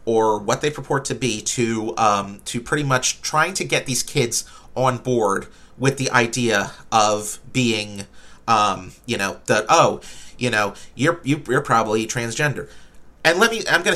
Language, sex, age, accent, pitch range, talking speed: English, male, 30-49, American, 110-140 Hz, 170 wpm